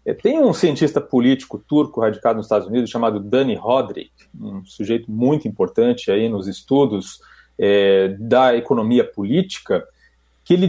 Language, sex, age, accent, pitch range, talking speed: Portuguese, male, 40-59, Brazilian, 125-185 Hz, 130 wpm